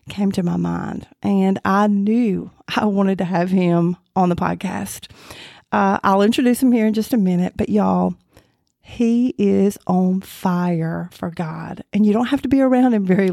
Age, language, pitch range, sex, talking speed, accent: 40-59, English, 185-225 Hz, female, 185 wpm, American